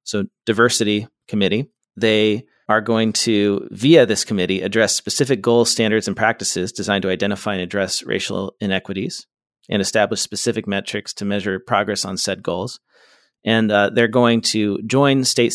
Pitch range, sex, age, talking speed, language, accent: 100-120 Hz, male, 40-59, 155 wpm, English, American